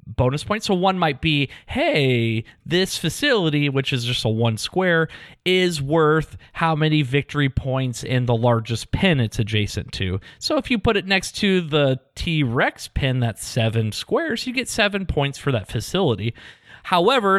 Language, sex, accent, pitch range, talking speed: English, male, American, 120-170 Hz, 170 wpm